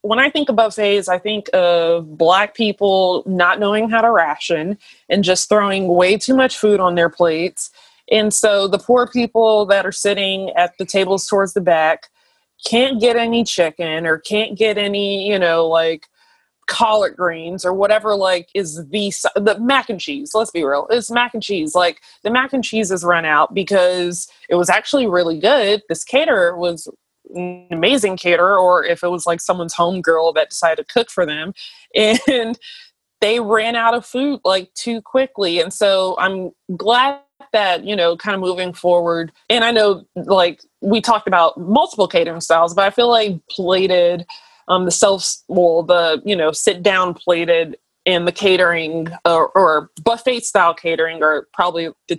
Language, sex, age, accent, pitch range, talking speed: English, female, 20-39, American, 175-220 Hz, 180 wpm